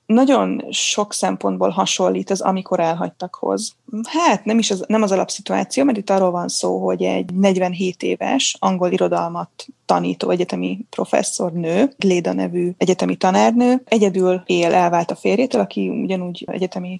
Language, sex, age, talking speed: Hungarian, female, 20-39, 145 wpm